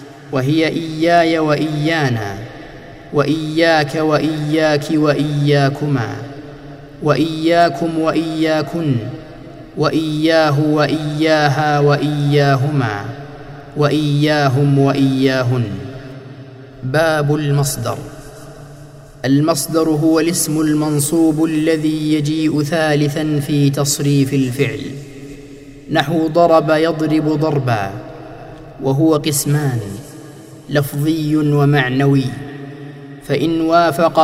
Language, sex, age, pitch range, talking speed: Arabic, male, 30-49, 140-155 Hz, 60 wpm